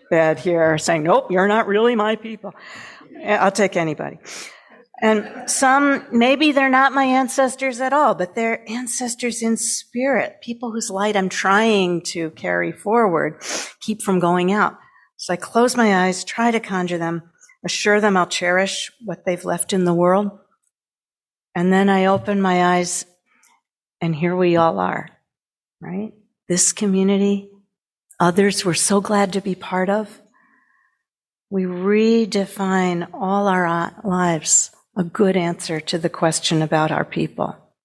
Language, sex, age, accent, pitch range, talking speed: English, female, 50-69, American, 170-215 Hz, 145 wpm